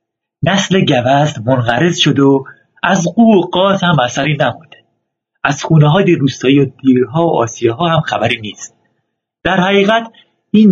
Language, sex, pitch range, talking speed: Persian, male, 135-175 Hz, 155 wpm